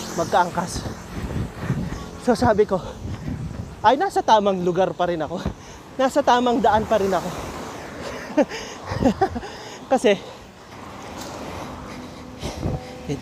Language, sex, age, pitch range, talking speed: Filipino, male, 20-39, 175-210 Hz, 85 wpm